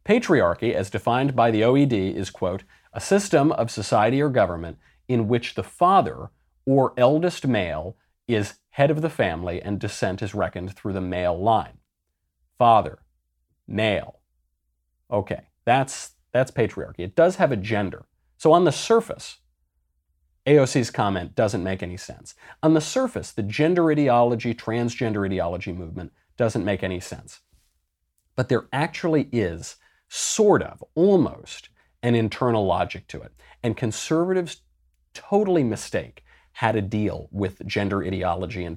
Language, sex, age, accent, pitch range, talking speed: English, male, 40-59, American, 90-140 Hz, 140 wpm